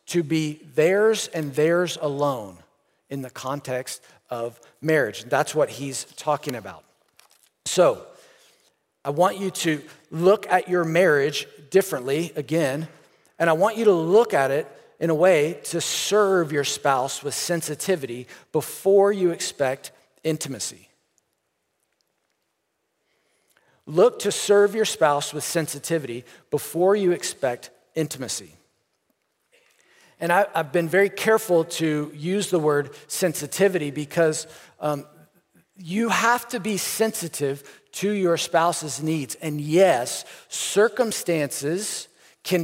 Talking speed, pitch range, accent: 120 wpm, 150-200 Hz, American